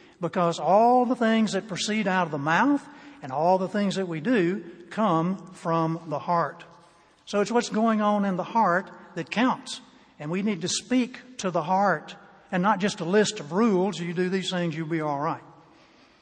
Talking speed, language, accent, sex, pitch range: 200 wpm, English, American, male, 170-210 Hz